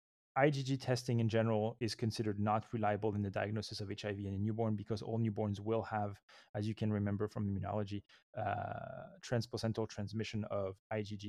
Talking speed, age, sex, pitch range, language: 170 wpm, 20-39, male, 105-120 Hz, English